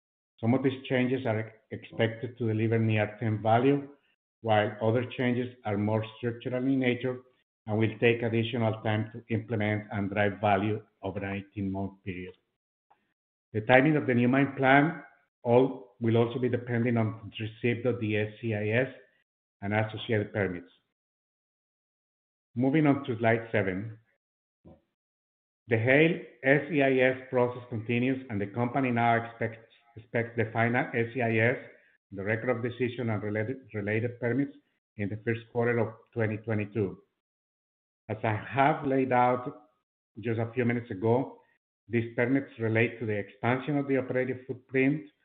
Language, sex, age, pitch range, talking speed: English, male, 50-69, 105-125 Hz, 140 wpm